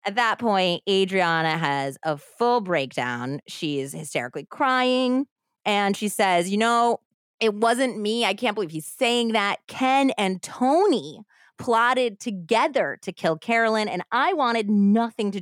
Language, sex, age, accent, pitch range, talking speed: English, female, 20-39, American, 165-230 Hz, 150 wpm